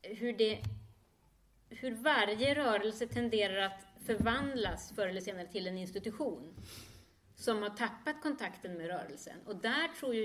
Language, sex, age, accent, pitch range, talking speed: English, female, 30-49, Swedish, 190-245 Hz, 140 wpm